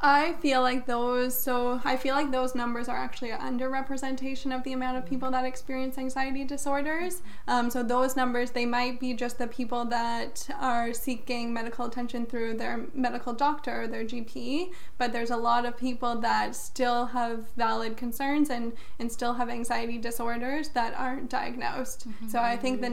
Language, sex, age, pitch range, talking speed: English, female, 10-29, 235-260 Hz, 180 wpm